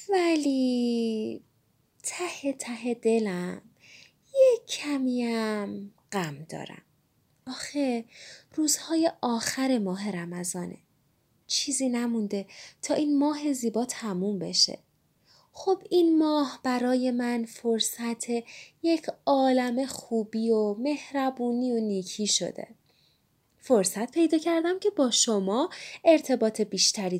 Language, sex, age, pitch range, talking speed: Persian, female, 20-39, 215-295 Hz, 95 wpm